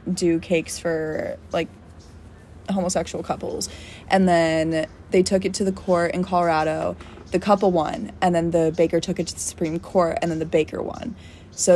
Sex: female